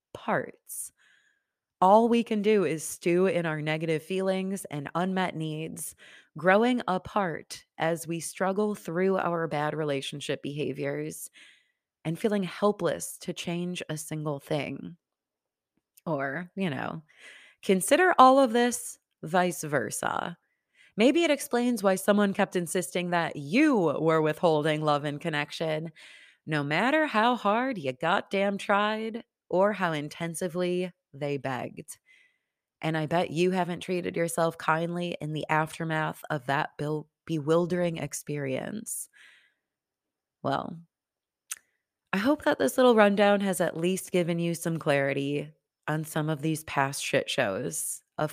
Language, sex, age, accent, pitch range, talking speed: English, female, 30-49, American, 155-205 Hz, 130 wpm